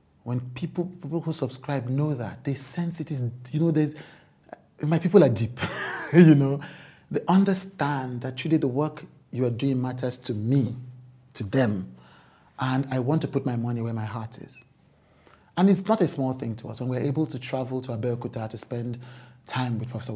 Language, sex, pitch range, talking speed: English, male, 115-145 Hz, 200 wpm